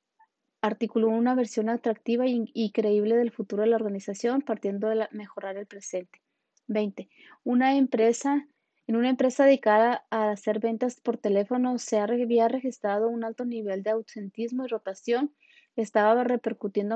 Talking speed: 135 wpm